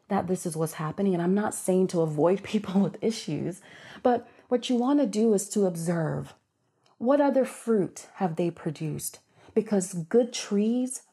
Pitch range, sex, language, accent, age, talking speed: 170-220 Hz, female, English, American, 30-49, 165 wpm